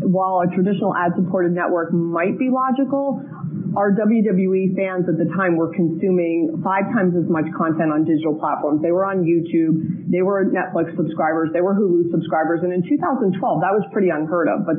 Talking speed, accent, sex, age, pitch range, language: 185 wpm, American, female, 30-49, 165-195 Hz, English